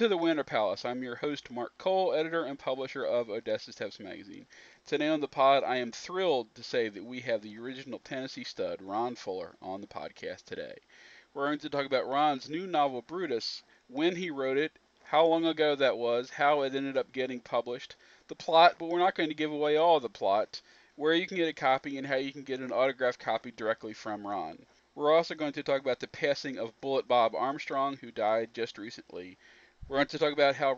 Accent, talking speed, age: American, 220 wpm, 40-59